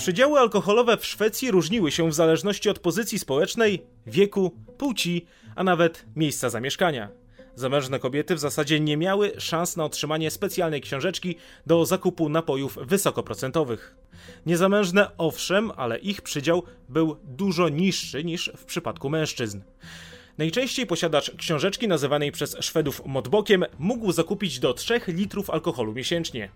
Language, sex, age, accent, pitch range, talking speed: Polish, male, 30-49, native, 130-190 Hz, 130 wpm